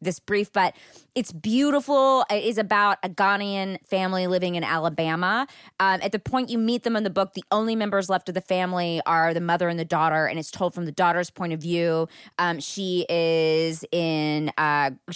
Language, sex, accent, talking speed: English, female, American, 200 wpm